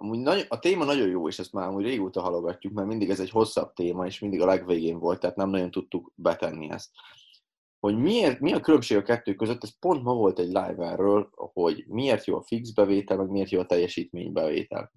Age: 20-39